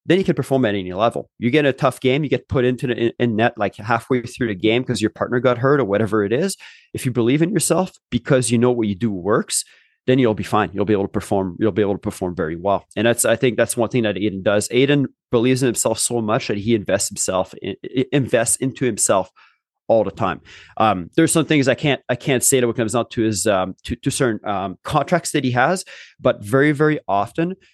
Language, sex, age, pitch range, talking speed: English, male, 30-49, 110-130 Hz, 250 wpm